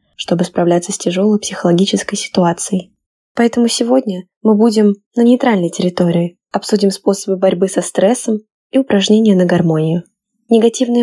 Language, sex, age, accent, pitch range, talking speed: Russian, female, 10-29, native, 190-230 Hz, 125 wpm